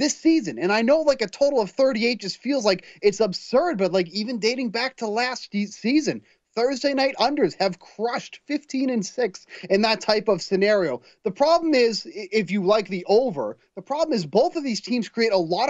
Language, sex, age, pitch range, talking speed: English, male, 30-49, 185-260 Hz, 205 wpm